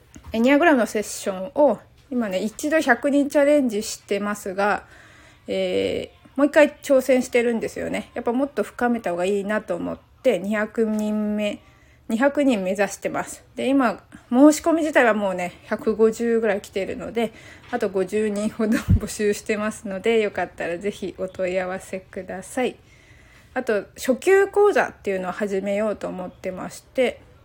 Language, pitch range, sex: Japanese, 200-260 Hz, female